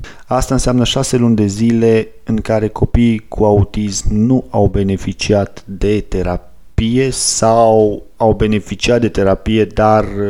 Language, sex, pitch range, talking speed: Romanian, male, 100-115 Hz, 130 wpm